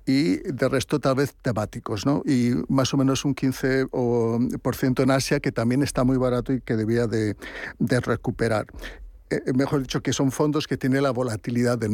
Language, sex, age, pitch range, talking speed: Spanish, male, 60-79, 120-140 Hz, 180 wpm